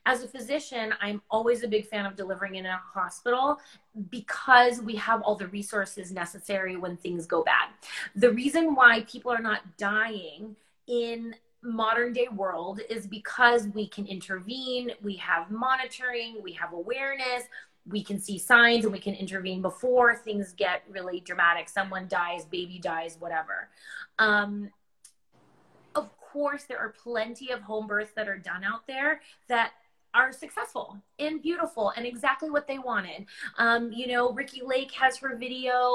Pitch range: 200-245 Hz